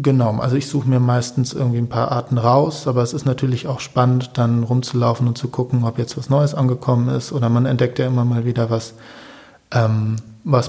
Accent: German